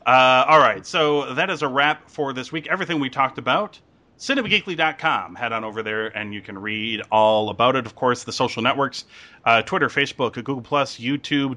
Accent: American